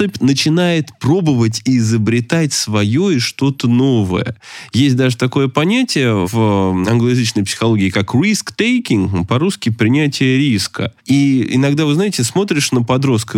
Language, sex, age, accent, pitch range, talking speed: Russian, male, 20-39, native, 120-175 Hz, 125 wpm